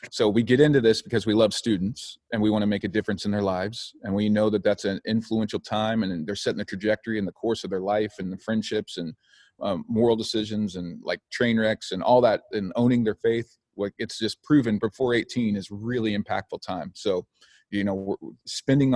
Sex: male